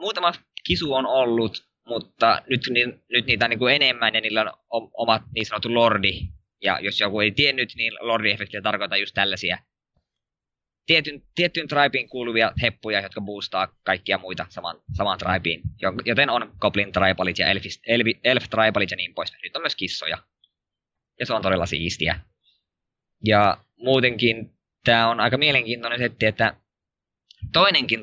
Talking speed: 150 wpm